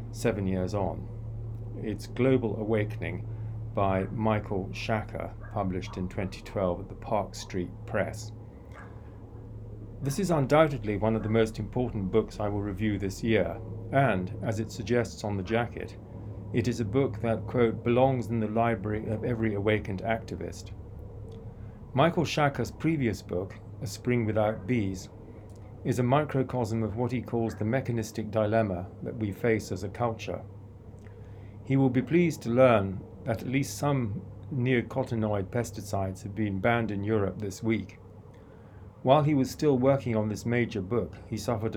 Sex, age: male, 40-59